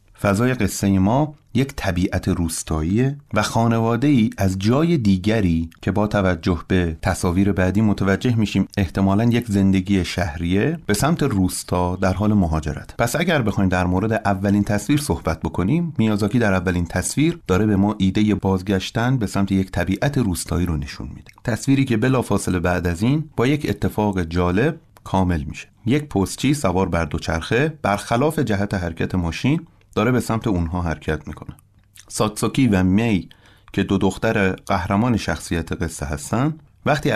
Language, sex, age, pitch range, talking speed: Persian, male, 30-49, 95-120 Hz, 150 wpm